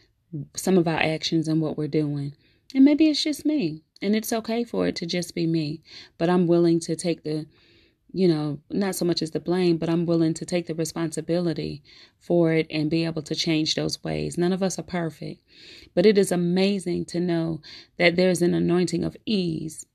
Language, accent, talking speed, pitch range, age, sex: English, American, 210 wpm, 155-185 Hz, 30-49, female